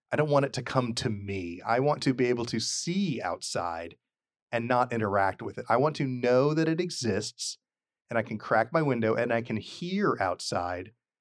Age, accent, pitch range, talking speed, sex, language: 40-59, American, 105-135 Hz, 210 wpm, male, English